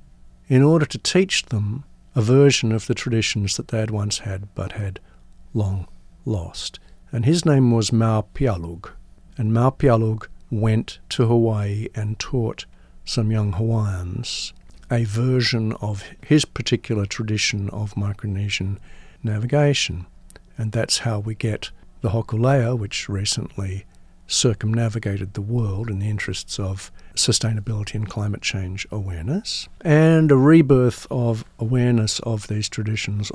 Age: 60-79